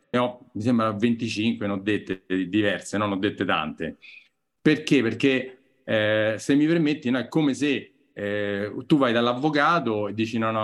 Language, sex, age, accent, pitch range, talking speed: Italian, male, 40-59, native, 110-155 Hz, 160 wpm